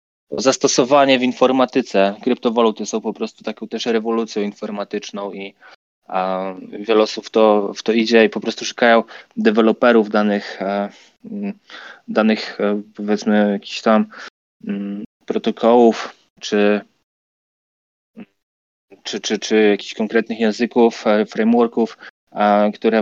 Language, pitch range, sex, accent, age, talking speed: Polish, 110-165 Hz, male, native, 20-39, 110 wpm